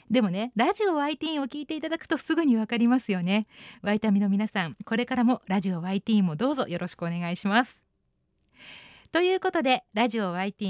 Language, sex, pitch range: Japanese, female, 195-290 Hz